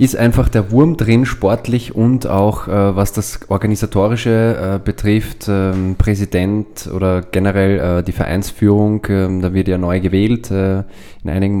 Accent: German